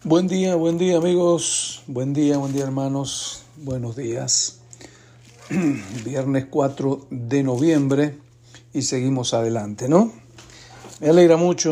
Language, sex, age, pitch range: Spanish, male, 60-79, 120-145 Hz